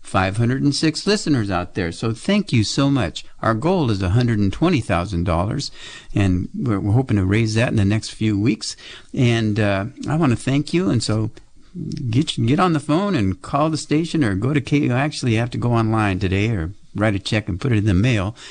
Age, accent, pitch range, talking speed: 60-79, American, 95-130 Hz, 210 wpm